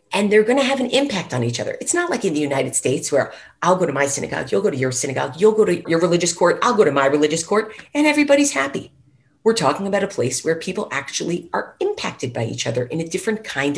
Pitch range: 125-215 Hz